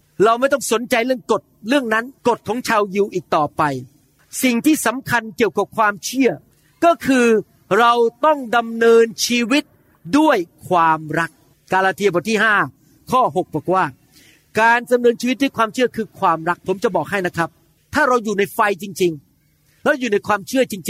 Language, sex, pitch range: Thai, male, 165-240 Hz